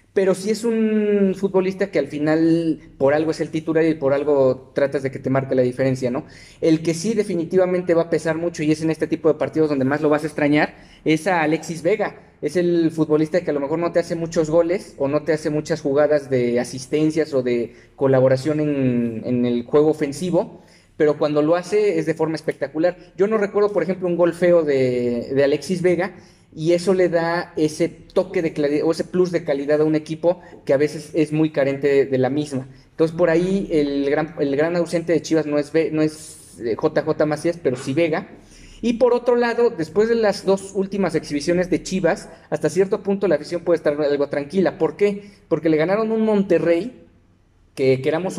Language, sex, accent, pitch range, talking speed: Spanish, male, Mexican, 145-175 Hz, 215 wpm